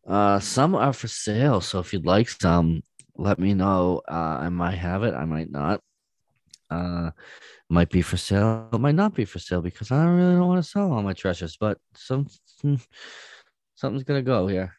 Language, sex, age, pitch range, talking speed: English, male, 20-39, 85-110 Hz, 200 wpm